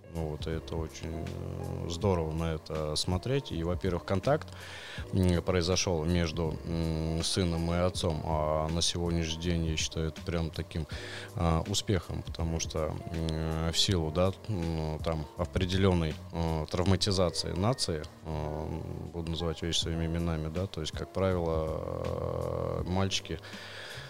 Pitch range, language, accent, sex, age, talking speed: 80-95 Hz, Russian, native, male, 20-39, 110 wpm